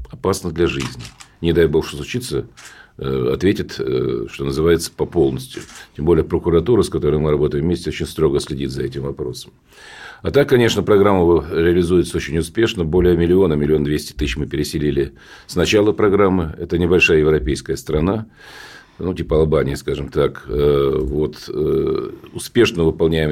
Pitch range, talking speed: 75-95 Hz, 140 wpm